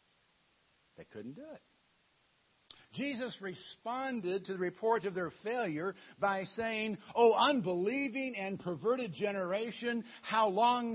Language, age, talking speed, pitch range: English, 60-79, 120 wpm, 170-220 Hz